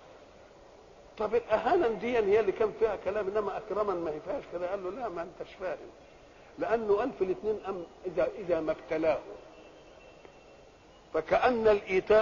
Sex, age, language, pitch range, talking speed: male, 50-69, Arabic, 170-240 Hz, 140 wpm